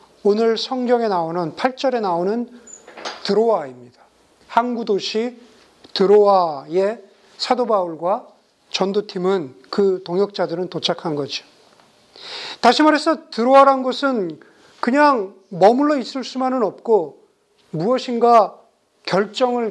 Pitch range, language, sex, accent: 190-250 Hz, Korean, male, native